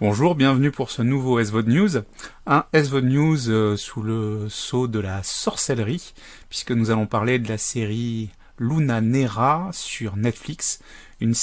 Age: 30-49